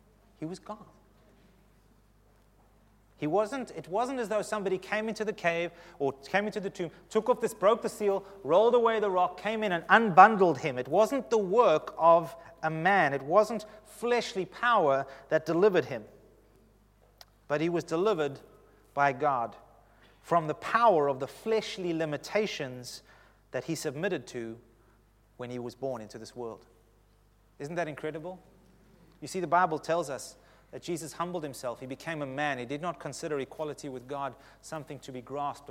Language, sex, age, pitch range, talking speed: English, male, 30-49, 135-185 Hz, 170 wpm